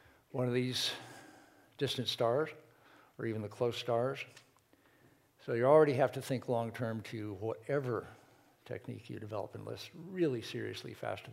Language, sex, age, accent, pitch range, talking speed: English, male, 60-79, American, 120-140 Hz, 140 wpm